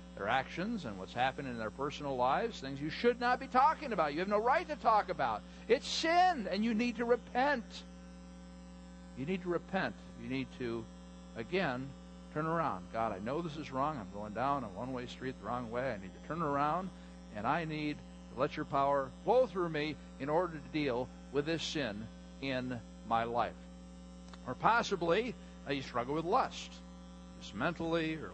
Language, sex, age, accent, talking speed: English, male, 50-69, American, 190 wpm